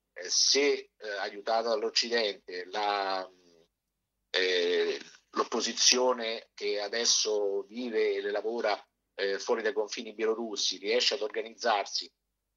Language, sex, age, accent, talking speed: Italian, male, 50-69, native, 100 wpm